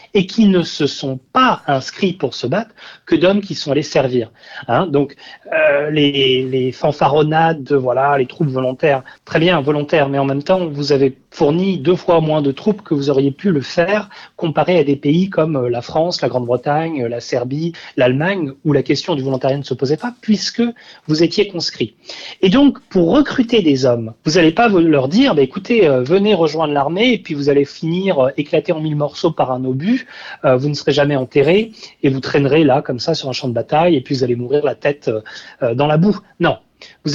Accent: French